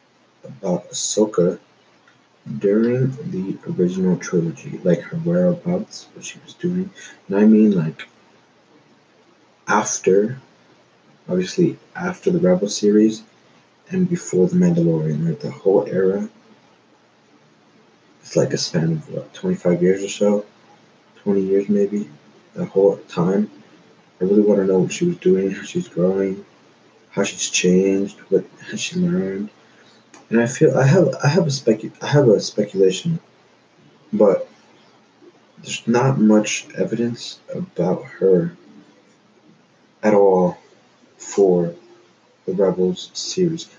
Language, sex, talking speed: English, male, 125 wpm